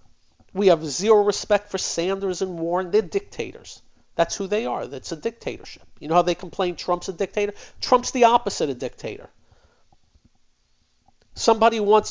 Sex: male